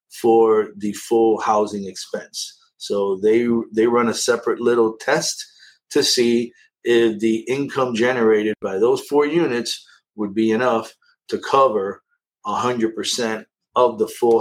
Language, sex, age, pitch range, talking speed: English, male, 50-69, 110-150 Hz, 135 wpm